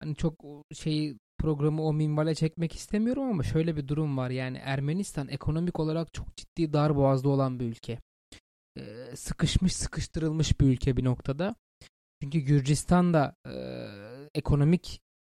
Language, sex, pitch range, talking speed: Turkish, male, 135-165 Hz, 140 wpm